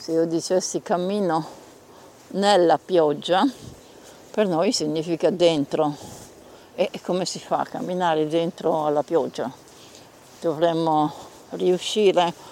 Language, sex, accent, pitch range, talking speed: Italian, female, native, 155-190 Hz, 100 wpm